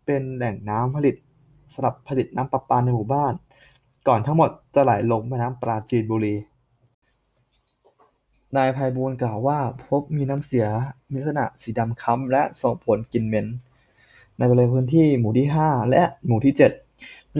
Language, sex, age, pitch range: Thai, male, 20-39, 120-140 Hz